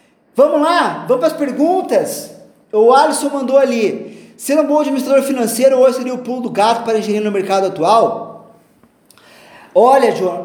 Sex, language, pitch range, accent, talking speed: male, Portuguese, 195-270 Hz, Brazilian, 160 wpm